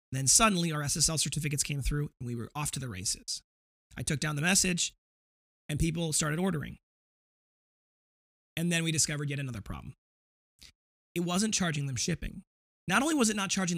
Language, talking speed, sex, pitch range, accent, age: English, 185 wpm, male, 135-180 Hz, American, 20-39